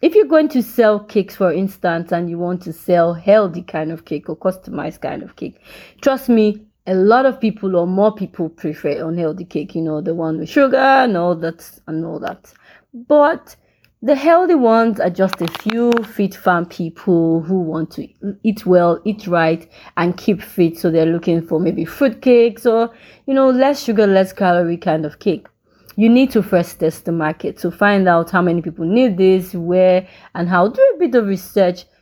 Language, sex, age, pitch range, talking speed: English, female, 30-49, 170-225 Hz, 200 wpm